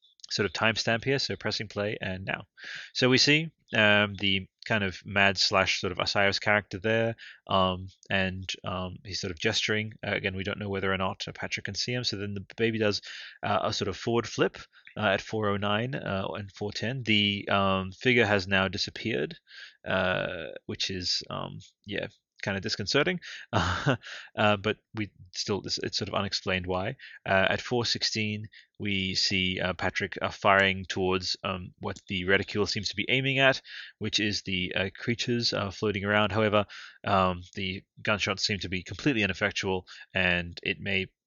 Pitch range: 95-110 Hz